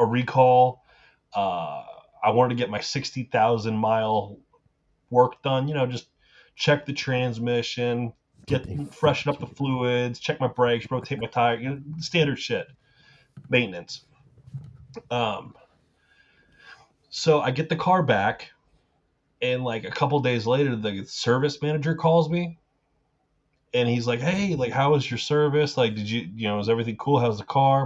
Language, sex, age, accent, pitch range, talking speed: English, male, 30-49, American, 115-145 Hz, 155 wpm